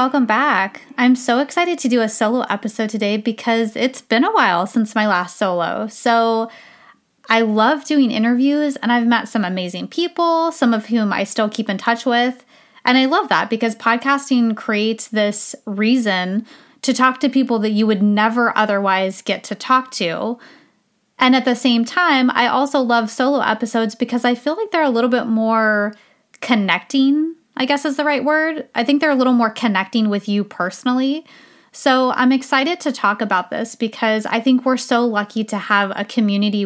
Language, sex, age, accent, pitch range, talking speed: English, female, 20-39, American, 215-265 Hz, 190 wpm